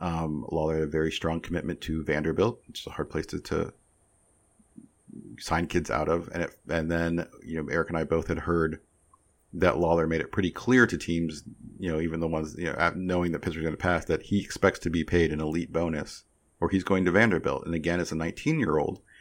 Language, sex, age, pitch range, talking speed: English, male, 40-59, 80-100 Hz, 230 wpm